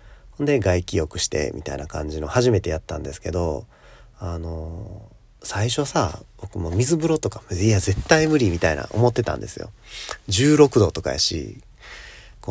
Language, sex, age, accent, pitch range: Japanese, male, 40-59, native, 85-120 Hz